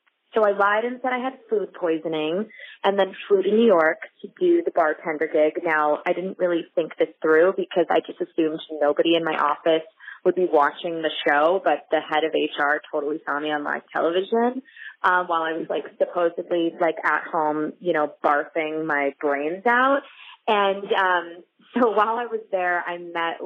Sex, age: female, 20-39